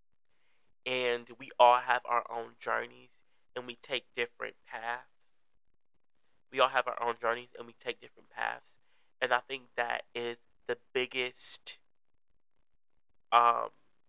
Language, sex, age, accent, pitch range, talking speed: English, male, 20-39, American, 120-135 Hz, 130 wpm